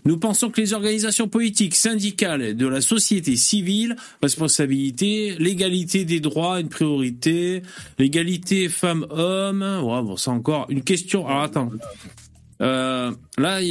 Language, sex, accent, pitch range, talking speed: French, male, French, 135-195 Hz, 130 wpm